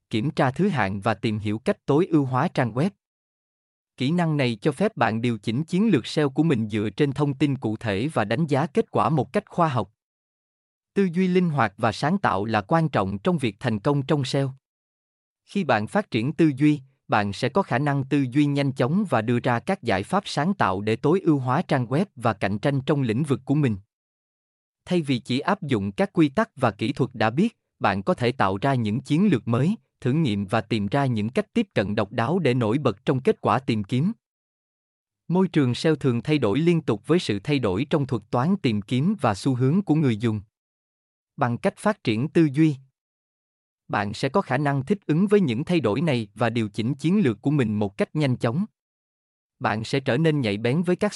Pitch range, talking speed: 115-165 Hz, 230 wpm